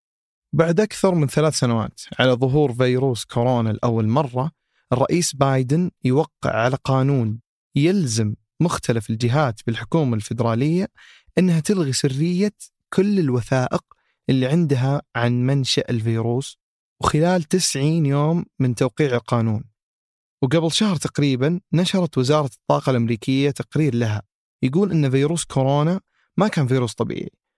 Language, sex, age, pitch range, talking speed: Arabic, male, 30-49, 120-160 Hz, 115 wpm